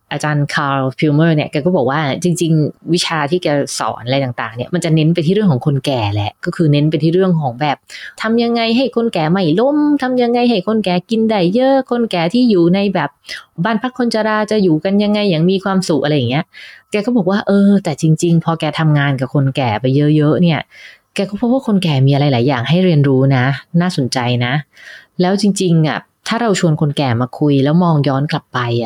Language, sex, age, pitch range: English, female, 20-39, 140-185 Hz